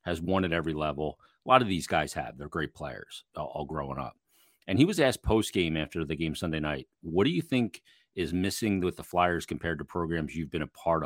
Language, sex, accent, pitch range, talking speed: English, male, American, 80-100 Hz, 240 wpm